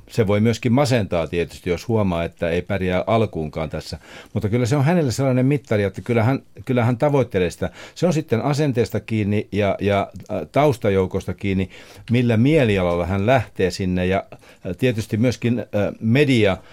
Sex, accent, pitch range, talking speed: male, native, 95-115 Hz, 155 wpm